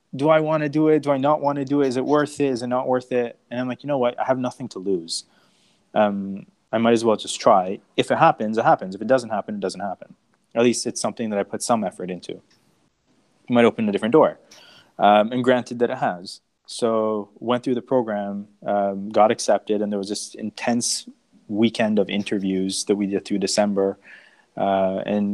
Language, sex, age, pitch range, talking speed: English, male, 20-39, 100-120 Hz, 225 wpm